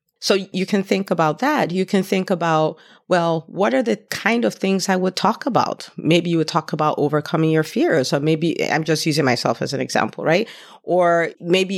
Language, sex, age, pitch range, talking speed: English, female, 40-59, 155-195 Hz, 210 wpm